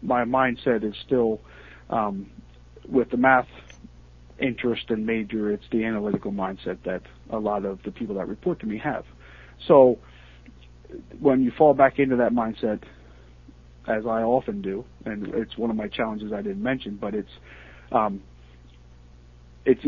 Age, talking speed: 40-59, 155 wpm